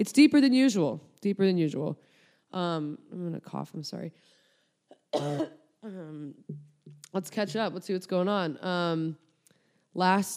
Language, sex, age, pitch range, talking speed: English, female, 20-39, 165-200 Hz, 145 wpm